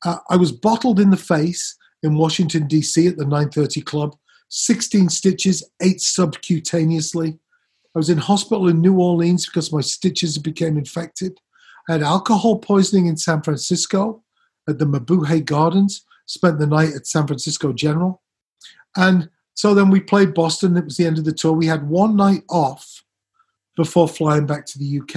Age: 40-59